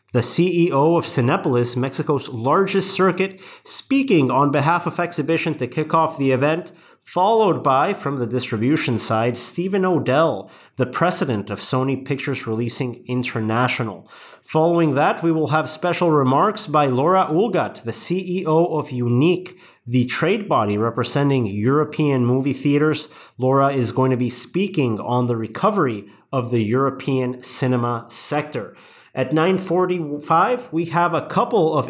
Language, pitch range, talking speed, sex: English, 130-165 Hz, 140 wpm, male